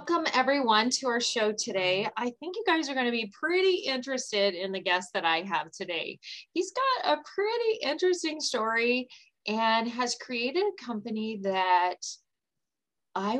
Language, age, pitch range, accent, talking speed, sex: English, 30-49, 195-255 Hz, American, 160 wpm, female